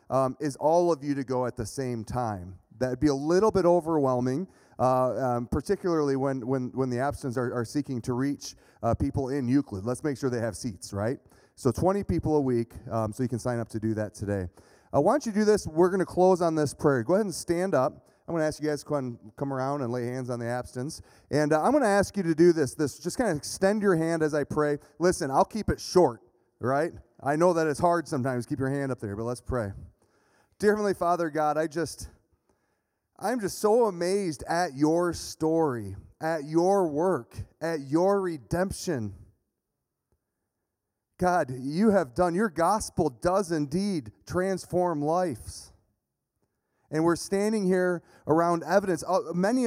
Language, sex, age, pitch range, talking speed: English, male, 30-49, 125-180 Hz, 200 wpm